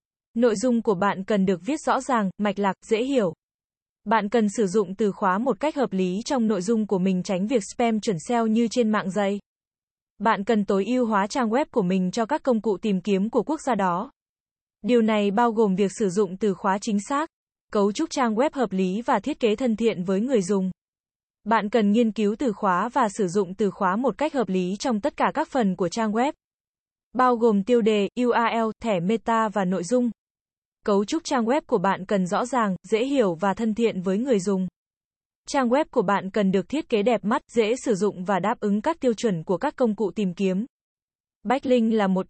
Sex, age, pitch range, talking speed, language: female, 20-39, 200-245 Hz, 225 wpm, Vietnamese